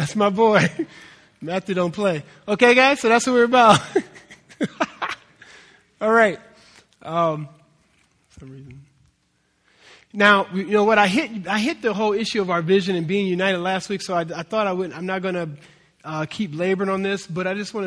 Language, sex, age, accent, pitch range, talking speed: English, male, 20-39, American, 150-180 Hz, 190 wpm